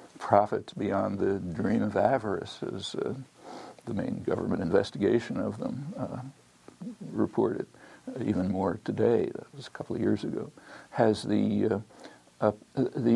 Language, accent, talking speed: English, American, 145 wpm